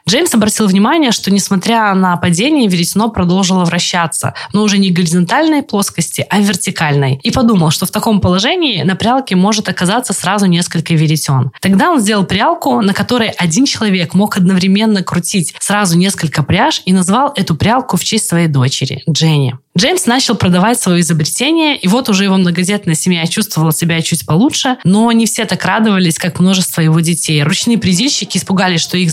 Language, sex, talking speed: Russian, female, 170 wpm